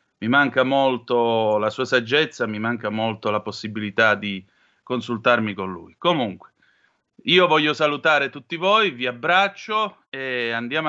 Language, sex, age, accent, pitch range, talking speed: Italian, male, 30-49, native, 120-155 Hz, 140 wpm